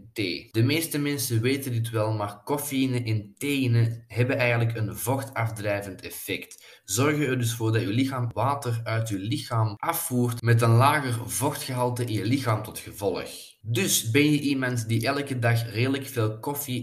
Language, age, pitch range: Dutch, 20-39, 110-130 Hz